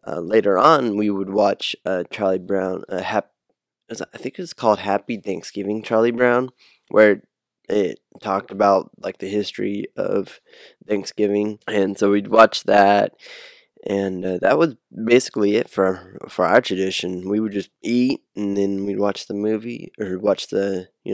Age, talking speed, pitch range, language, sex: 10-29, 165 wpm, 95-105 Hz, English, male